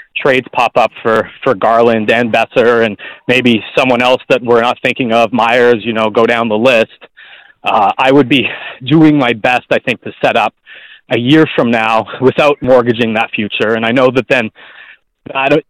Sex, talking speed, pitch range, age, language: male, 190 wpm, 115-150 Hz, 30-49, English